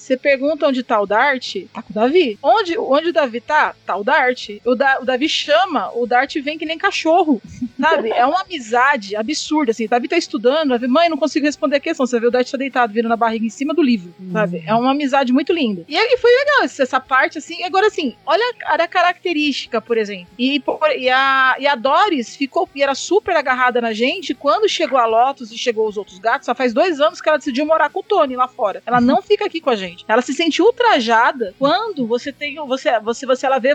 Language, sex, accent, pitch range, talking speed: Portuguese, female, Brazilian, 240-310 Hz, 240 wpm